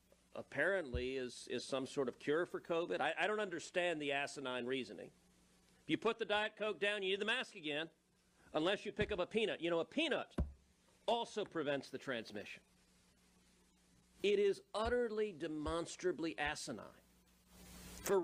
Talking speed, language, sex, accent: 160 wpm, English, male, American